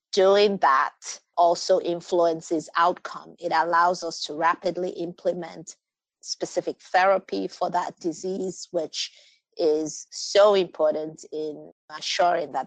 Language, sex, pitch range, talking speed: English, female, 160-190 Hz, 110 wpm